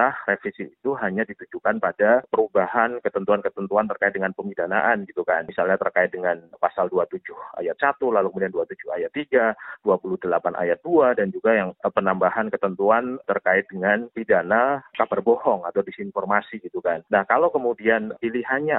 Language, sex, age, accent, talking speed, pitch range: Indonesian, male, 30-49, native, 145 wpm, 100-135 Hz